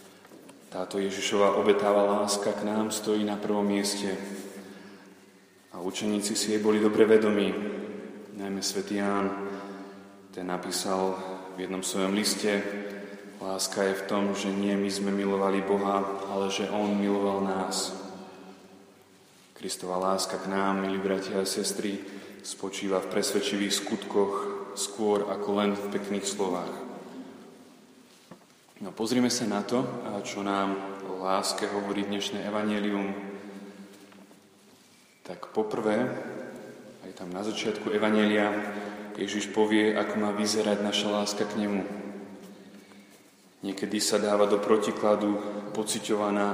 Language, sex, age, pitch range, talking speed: Slovak, male, 20-39, 100-105 Hz, 120 wpm